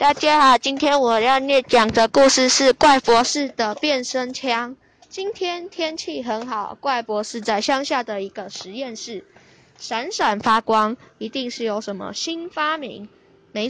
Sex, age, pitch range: female, 10-29, 225-290 Hz